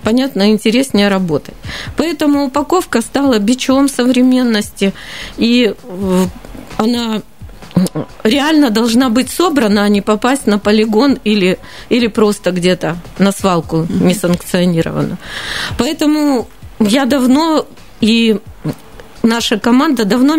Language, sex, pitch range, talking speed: Russian, female, 205-260 Hz, 100 wpm